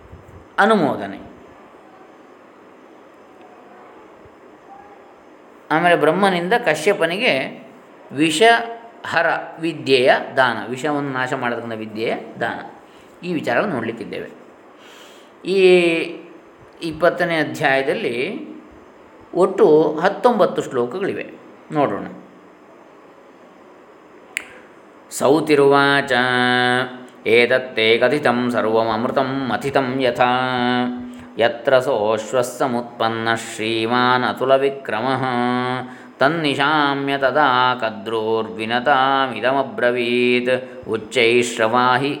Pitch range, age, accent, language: 120-150 Hz, 20-39, native, Kannada